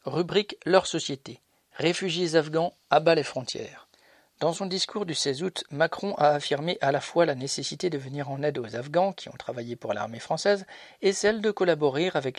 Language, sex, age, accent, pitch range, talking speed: French, male, 50-69, French, 135-165 Hz, 190 wpm